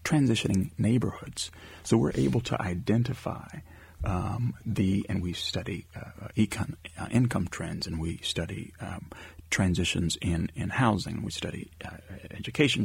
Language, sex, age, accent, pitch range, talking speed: English, male, 40-59, American, 90-120 Hz, 130 wpm